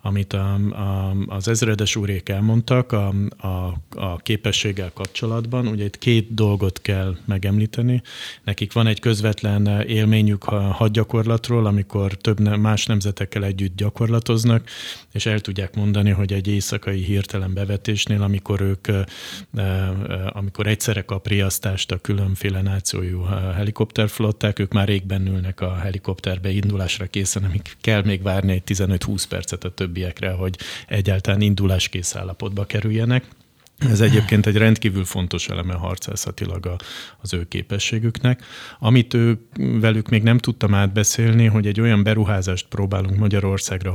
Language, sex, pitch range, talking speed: Hungarian, male, 95-110 Hz, 125 wpm